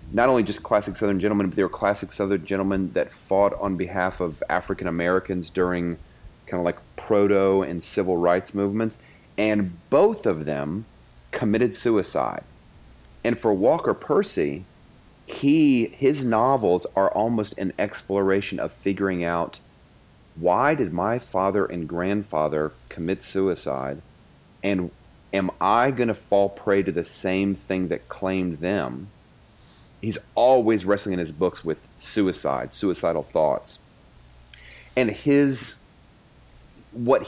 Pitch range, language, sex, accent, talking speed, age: 85-110 Hz, English, male, American, 135 wpm, 40-59